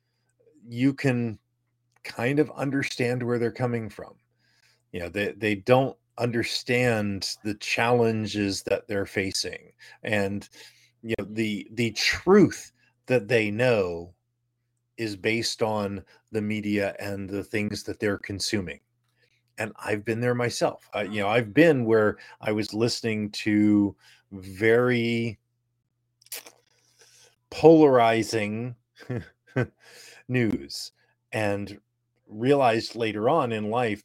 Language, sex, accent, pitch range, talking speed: English, male, American, 105-125 Hz, 115 wpm